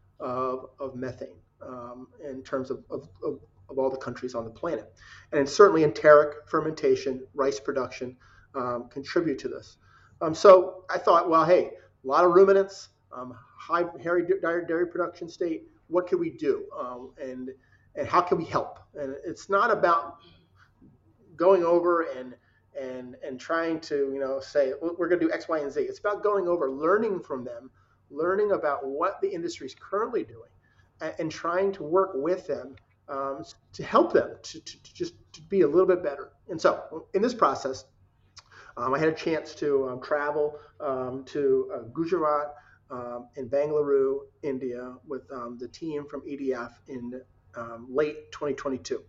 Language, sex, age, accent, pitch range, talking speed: English, male, 30-49, American, 130-175 Hz, 170 wpm